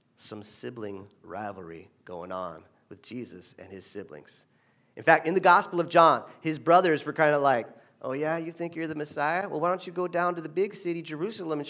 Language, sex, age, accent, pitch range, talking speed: English, male, 40-59, American, 160-225 Hz, 215 wpm